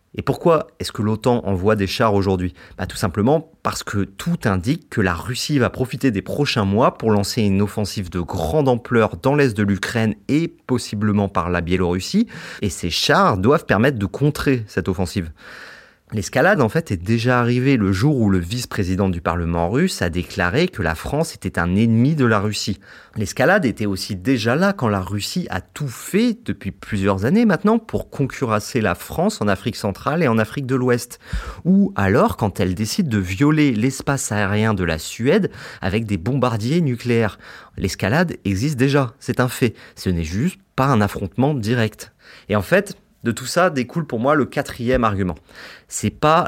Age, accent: 30-49, French